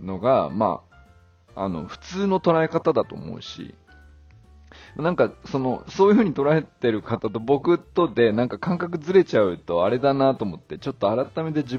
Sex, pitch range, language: male, 95-145 Hz, Japanese